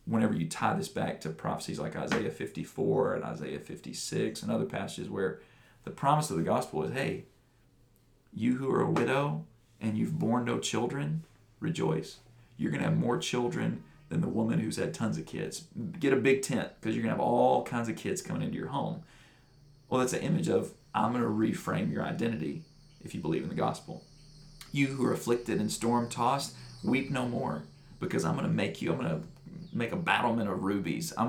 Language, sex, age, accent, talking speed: English, male, 40-59, American, 205 wpm